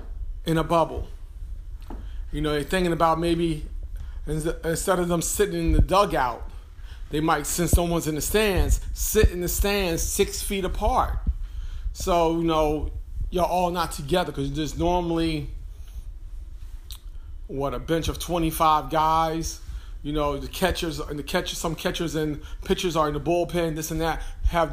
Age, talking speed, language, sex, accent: 40-59, 160 wpm, English, male, American